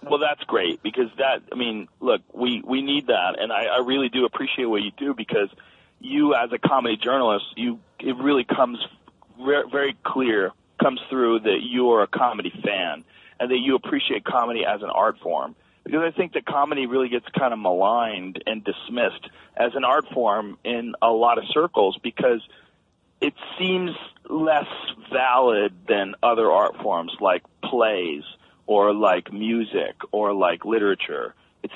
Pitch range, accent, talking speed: 115-145 Hz, American, 170 wpm